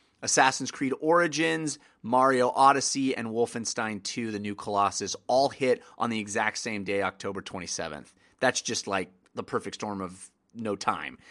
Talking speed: 155 wpm